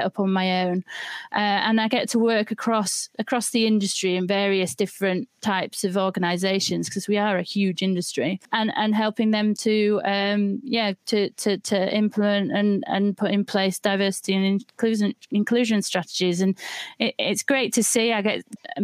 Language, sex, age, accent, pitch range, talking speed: English, female, 30-49, British, 190-220 Hz, 180 wpm